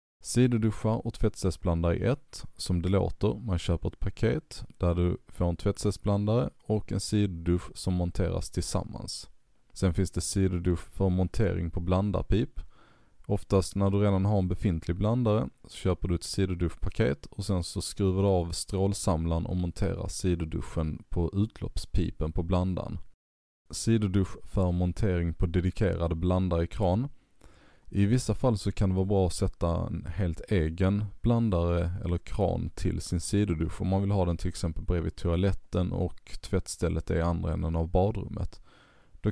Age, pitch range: 20-39, 85-105 Hz